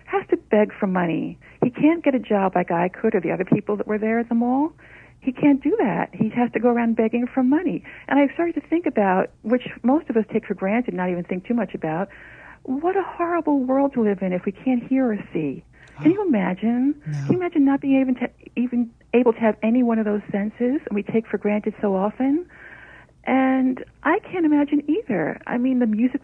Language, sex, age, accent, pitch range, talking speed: English, female, 60-79, American, 190-270 Hz, 235 wpm